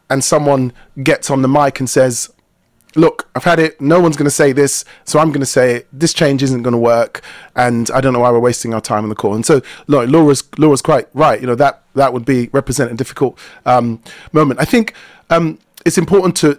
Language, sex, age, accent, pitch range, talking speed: English, male, 30-49, British, 130-165 Hz, 235 wpm